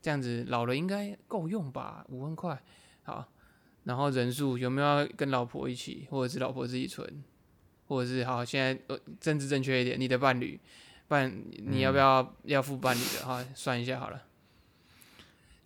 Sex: male